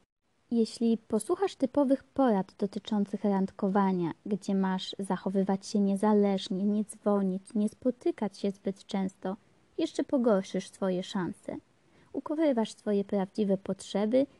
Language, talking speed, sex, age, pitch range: Polish, 110 wpm, female, 20-39, 200-240 Hz